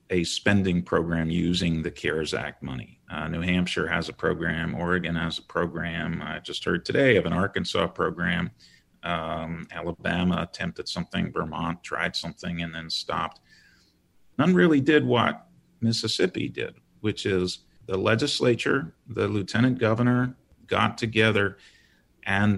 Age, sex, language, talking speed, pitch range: 40-59, male, English, 140 wpm, 90-120 Hz